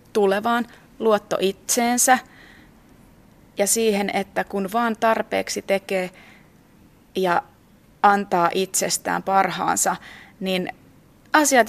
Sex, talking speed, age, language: female, 80 wpm, 30-49, Finnish